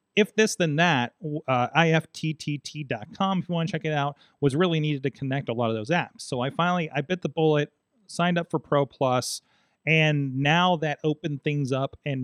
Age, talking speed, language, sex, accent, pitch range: 30-49, 205 wpm, English, male, American, 125-160 Hz